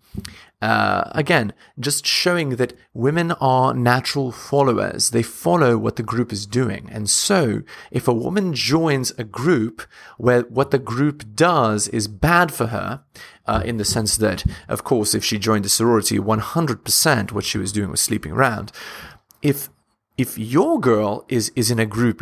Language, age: English, 30-49